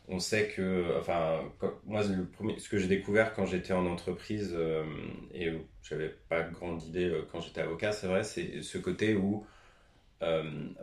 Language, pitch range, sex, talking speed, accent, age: French, 80-100 Hz, male, 190 wpm, French, 30-49